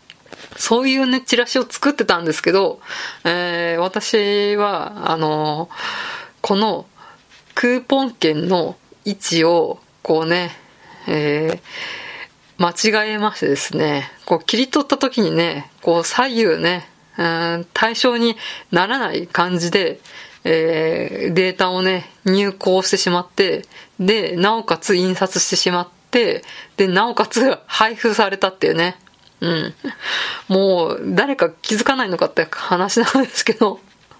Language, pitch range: Japanese, 170-220 Hz